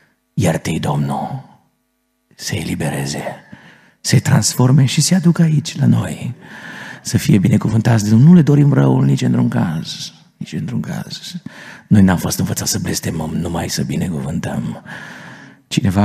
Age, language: 50-69, Romanian